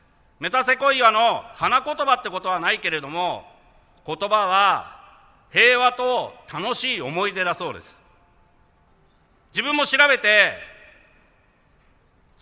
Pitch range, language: 210-275 Hz, Japanese